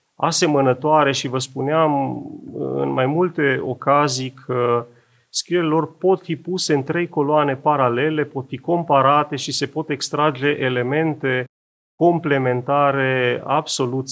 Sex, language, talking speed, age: male, Romanian, 115 wpm, 30-49